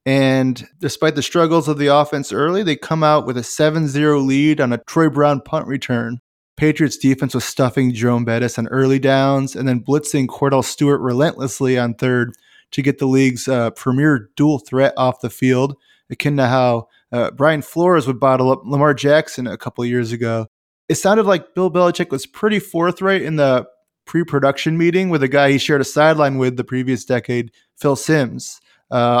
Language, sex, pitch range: English, male, 130-150 Hz